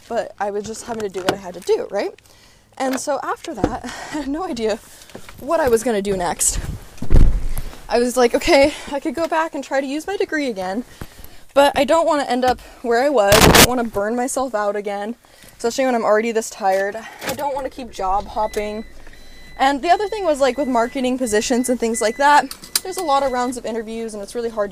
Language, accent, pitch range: English, American, 210-280 Hz